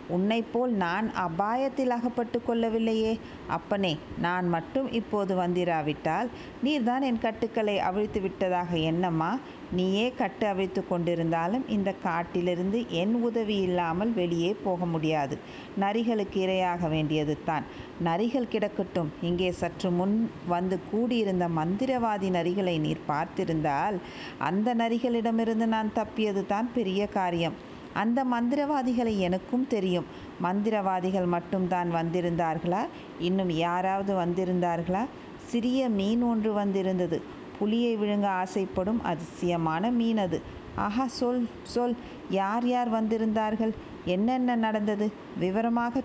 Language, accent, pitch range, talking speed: Tamil, native, 180-230 Hz, 100 wpm